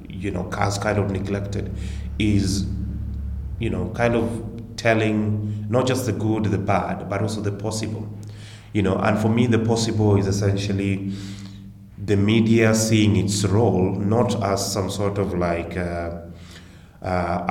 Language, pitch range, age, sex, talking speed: English, 95-105 Hz, 30-49, male, 150 wpm